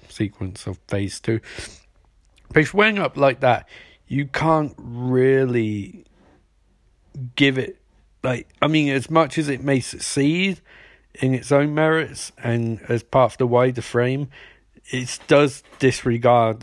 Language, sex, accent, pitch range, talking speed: English, male, British, 110-140 Hz, 135 wpm